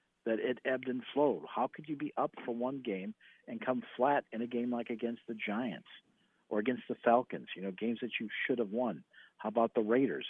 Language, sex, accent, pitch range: English, male, American, 110-130 Hz